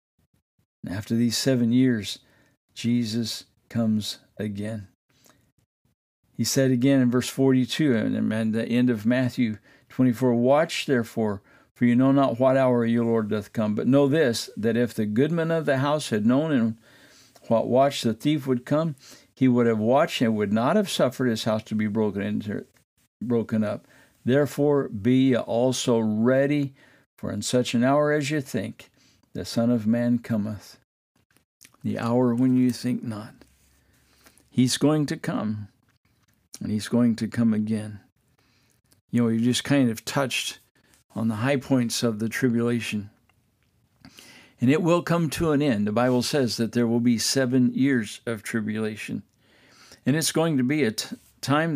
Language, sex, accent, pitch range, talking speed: English, male, American, 110-135 Hz, 165 wpm